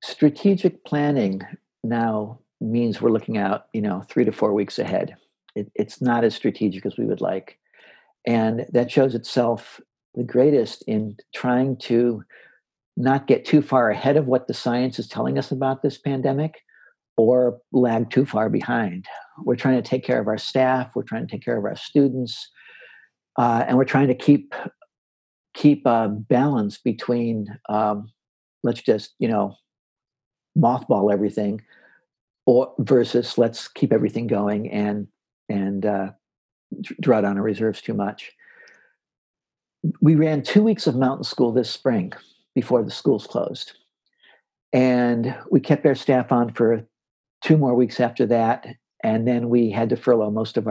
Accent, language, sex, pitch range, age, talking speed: American, English, male, 110-135 Hz, 50-69, 155 wpm